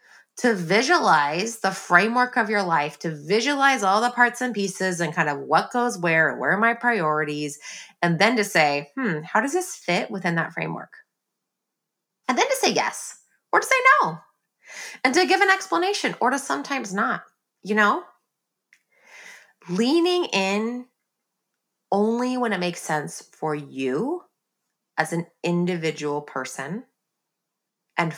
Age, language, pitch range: 20-39, English, 170-240 Hz